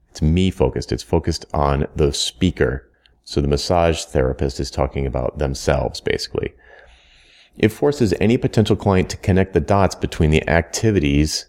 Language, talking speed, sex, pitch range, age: English, 150 wpm, male, 70-95 Hz, 30-49